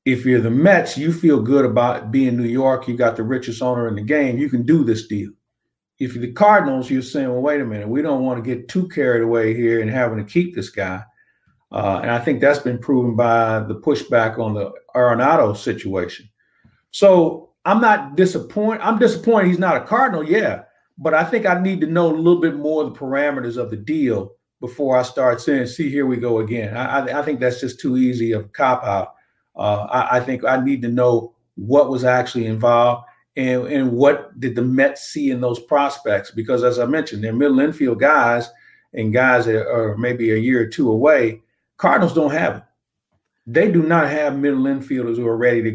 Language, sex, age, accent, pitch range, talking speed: English, male, 50-69, American, 120-155 Hz, 215 wpm